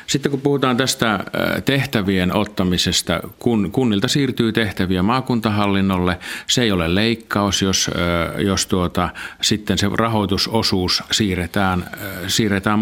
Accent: native